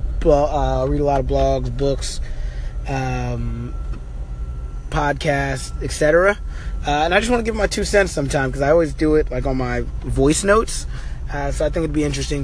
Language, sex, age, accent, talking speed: English, male, 20-39, American, 180 wpm